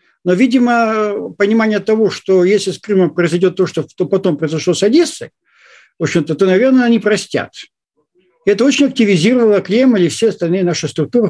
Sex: male